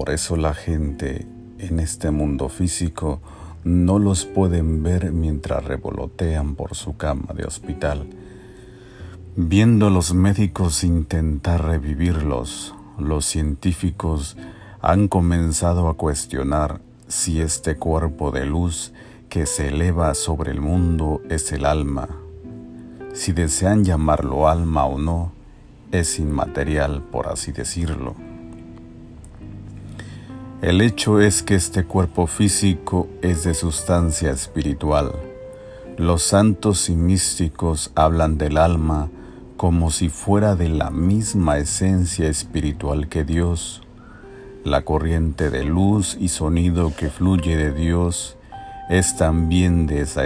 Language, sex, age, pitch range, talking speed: Spanish, male, 50-69, 80-95 Hz, 115 wpm